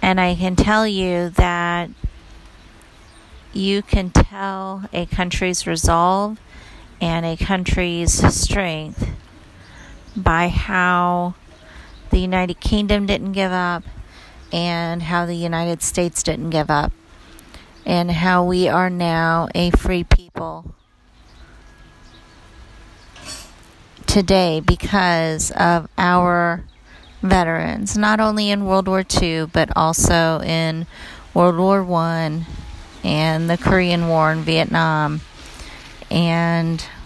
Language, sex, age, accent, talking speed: English, female, 40-59, American, 105 wpm